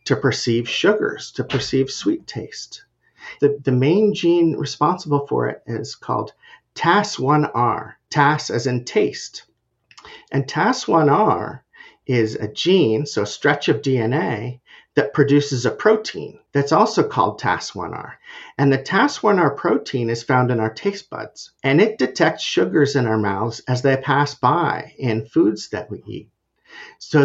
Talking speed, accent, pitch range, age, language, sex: 145 wpm, American, 125-170 Hz, 50-69, English, male